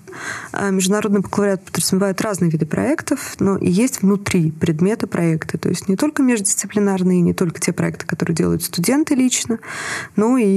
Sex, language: female, Russian